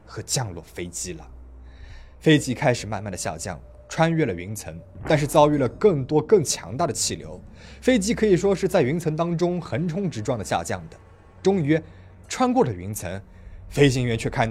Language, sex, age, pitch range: Chinese, male, 20-39, 95-160 Hz